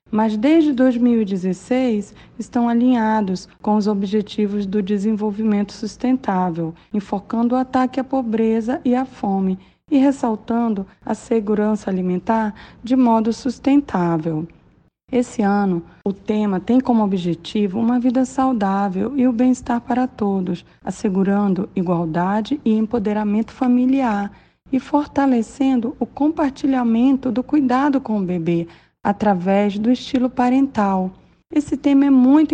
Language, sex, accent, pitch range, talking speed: Portuguese, female, Brazilian, 195-255 Hz, 120 wpm